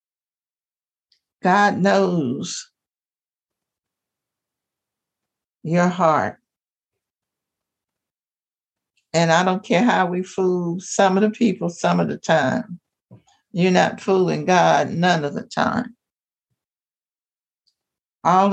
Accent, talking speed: American, 90 wpm